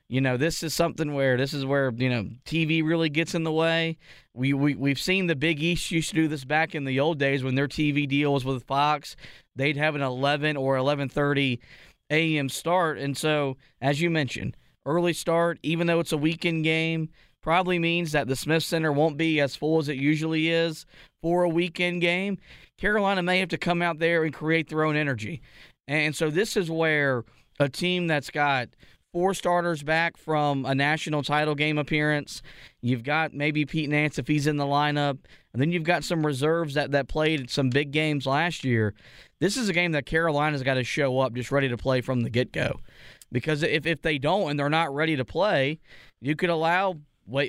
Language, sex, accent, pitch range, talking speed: English, male, American, 140-165 Hz, 210 wpm